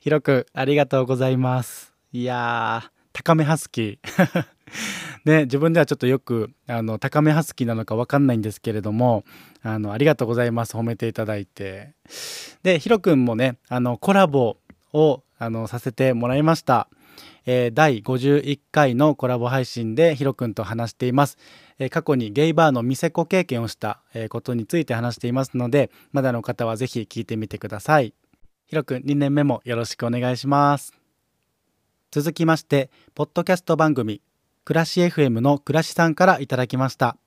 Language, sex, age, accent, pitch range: Japanese, male, 20-39, native, 120-150 Hz